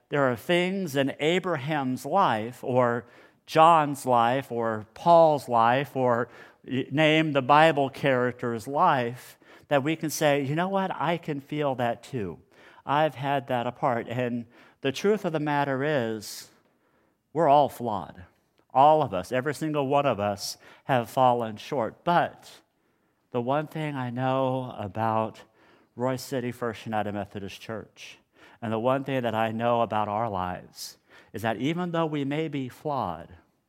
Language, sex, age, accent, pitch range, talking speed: English, male, 50-69, American, 115-155 Hz, 155 wpm